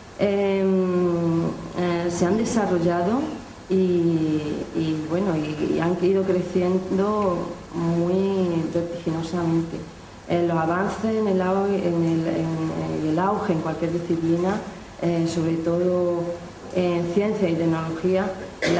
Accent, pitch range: Spanish, 165-185 Hz